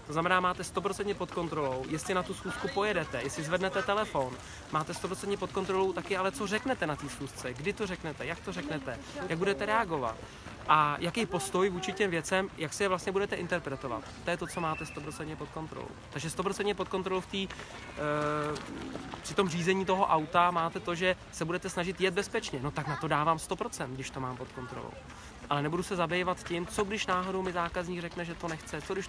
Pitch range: 155-190 Hz